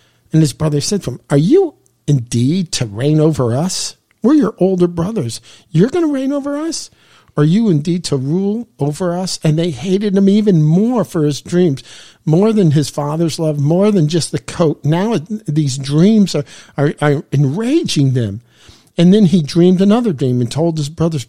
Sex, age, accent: male, 50-69, American